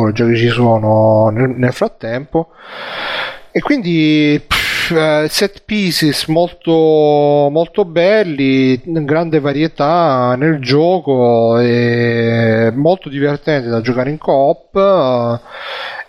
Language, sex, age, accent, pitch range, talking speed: Italian, male, 30-49, native, 120-145 Hz, 110 wpm